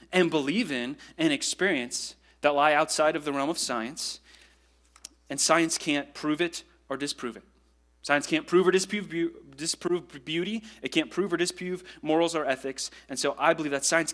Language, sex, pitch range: English, male, 135-195 Hz